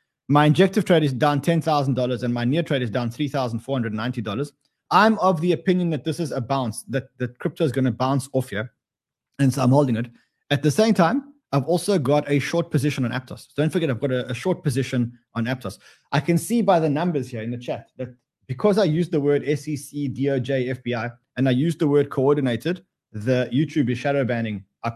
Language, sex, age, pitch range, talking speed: English, male, 20-39, 130-160 Hz, 215 wpm